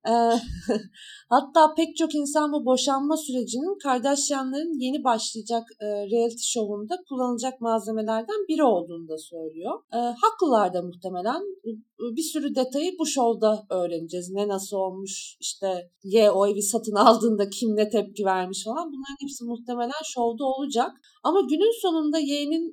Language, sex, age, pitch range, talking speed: Turkish, female, 40-59, 225-315 Hz, 140 wpm